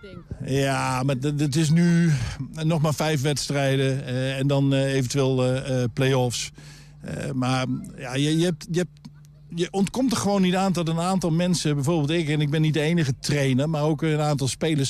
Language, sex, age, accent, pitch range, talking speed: Dutch, male, 50-69, Dutch, 135-160 Hz, 165 wpm